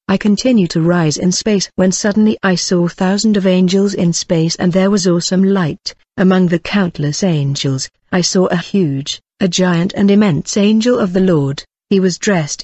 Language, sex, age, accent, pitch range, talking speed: English, female, 50-69, British, 165-195 Hz, 185 wpm